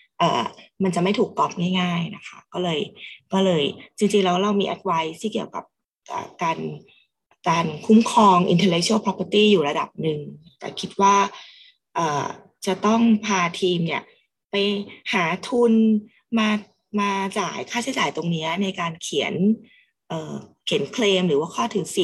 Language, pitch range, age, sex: Thai, 170-210 Hz, 20-39, female